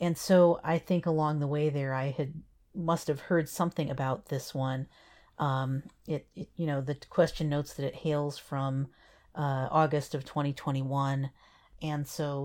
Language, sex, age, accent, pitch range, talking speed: English, female, 40-59, American, 140-170 Hz, 160 wpm